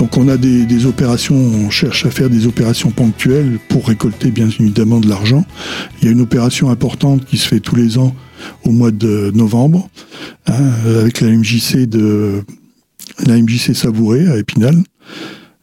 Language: French